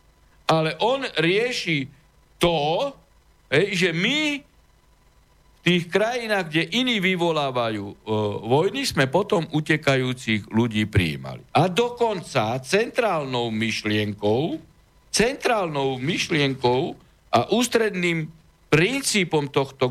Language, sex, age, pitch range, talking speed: Slovak, male, 60-79, 110-170 Hz, 85 wpm